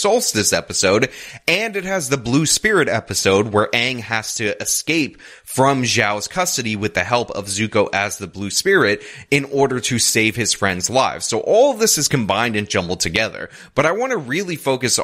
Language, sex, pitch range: English, male, 110-140 Hz